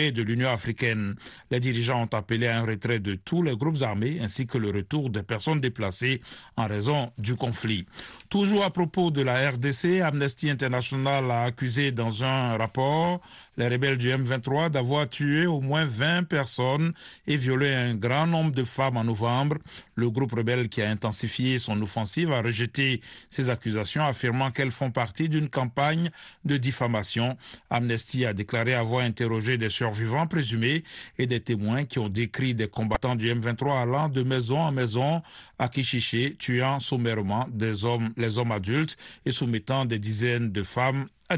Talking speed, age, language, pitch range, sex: 170 wpm, 50-69, French, 115-140 Hz, male